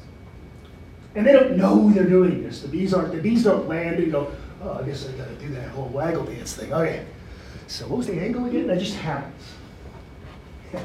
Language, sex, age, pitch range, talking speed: English, male, 40-59, 155-205 Hz, 215 wpm